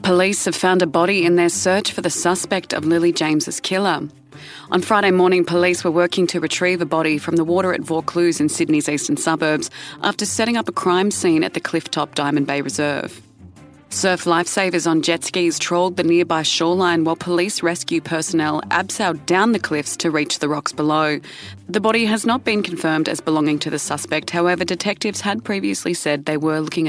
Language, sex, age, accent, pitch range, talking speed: English, female, 30-49, Australian, 150-185 Hz, 195 wpm